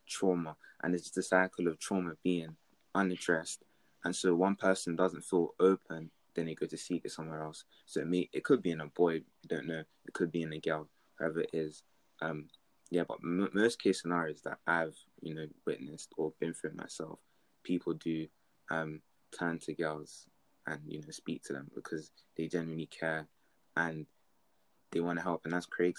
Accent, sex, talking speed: British, male, 195 wpm